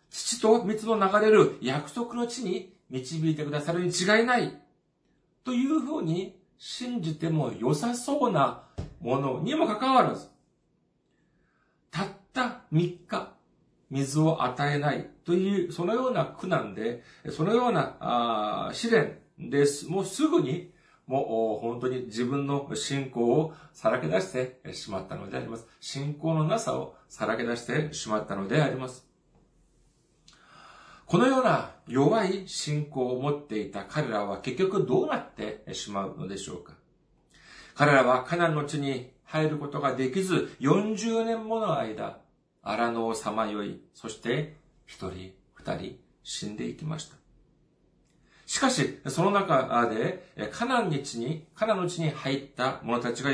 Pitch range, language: 130-195 Hz, Japanese